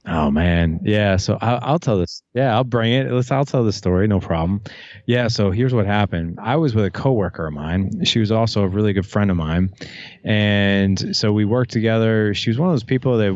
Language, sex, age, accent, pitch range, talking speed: English, male, 30-49, American, 95-120 Hz, 230 wpm